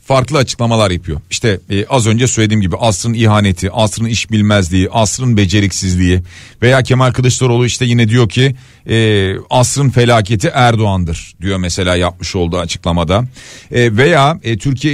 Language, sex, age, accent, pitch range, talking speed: Turkish, male, 40-59, native, 105-140 Hz, 145 wpm